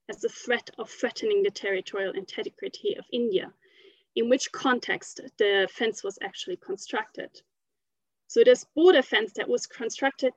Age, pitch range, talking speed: 30-49, 245-415 Hz, 145 wpm